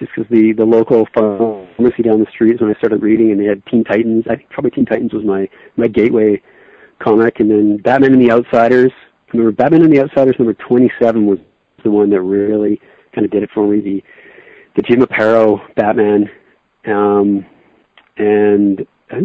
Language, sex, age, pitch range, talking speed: English, male, 40-59, 110-135 Hz, 195 wpm